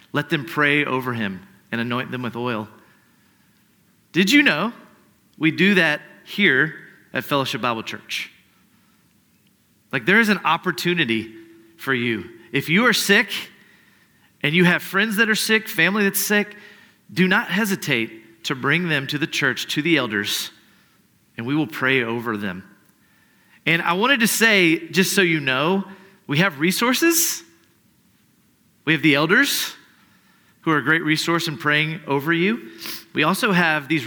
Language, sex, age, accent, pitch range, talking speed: English, male, 40-59, American, 145-195 Hz, 155 wpm